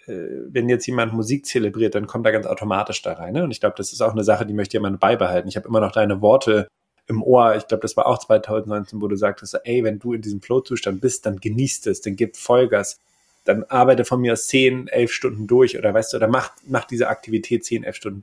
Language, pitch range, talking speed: German, 105-120 Hz, 245 wpm